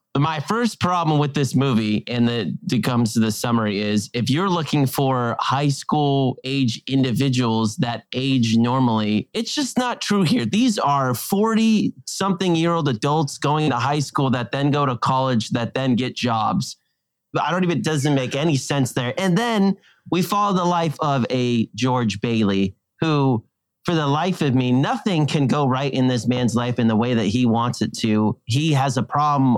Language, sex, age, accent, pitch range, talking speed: English, male, 30-49, American, 120-150 Hz, 190 wpm